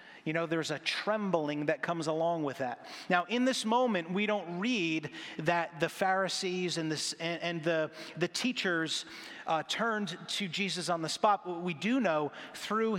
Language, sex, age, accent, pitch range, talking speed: English, male, 30-49, American, 165-200 Hz, 175 wpm